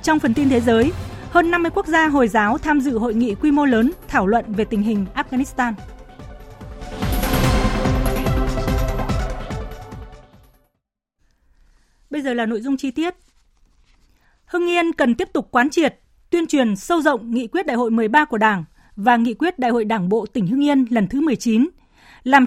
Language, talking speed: Vietnamese, 170 wpm